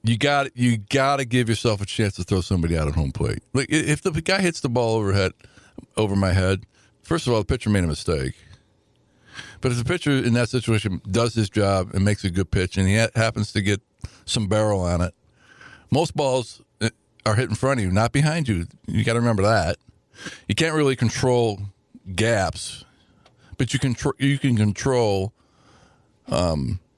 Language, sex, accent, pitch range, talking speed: English, male, American, 95-125 Hz, 200 wpm